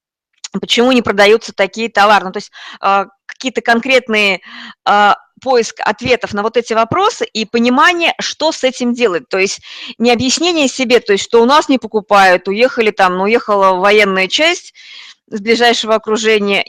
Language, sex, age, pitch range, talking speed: Russian, female, 20-39, 200-245 Hz, 160 wpm